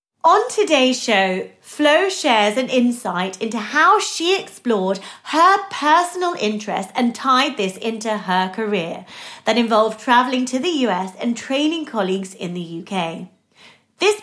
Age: 30-49